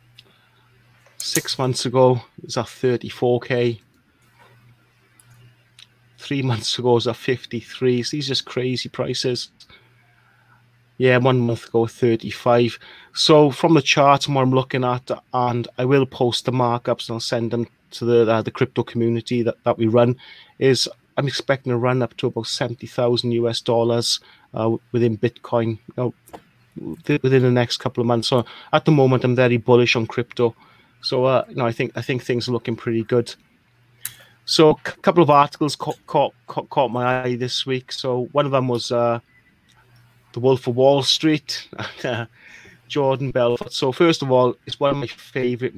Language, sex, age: English, male, 30-49